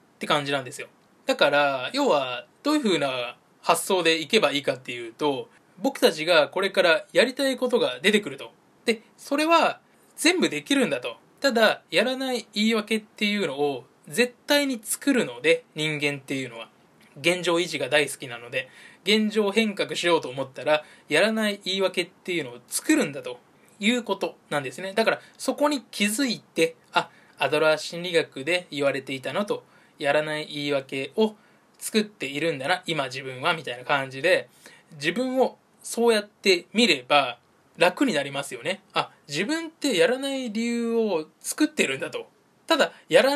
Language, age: Japanese, 20-39